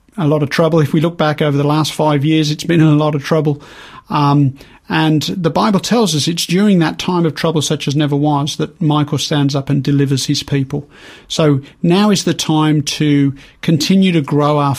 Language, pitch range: English, 145-170 Hz